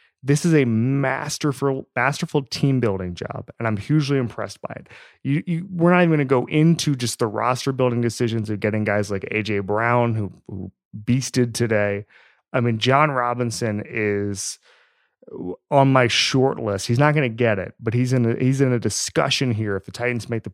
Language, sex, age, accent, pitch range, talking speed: English, male, 30-49, American, 110-140 Hz, 190 wpm